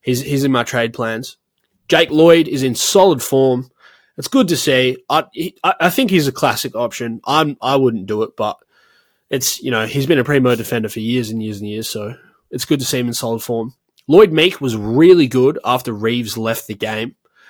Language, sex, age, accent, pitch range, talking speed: English, male, 20-39, Australian, 115-140 Hz, 215 wpm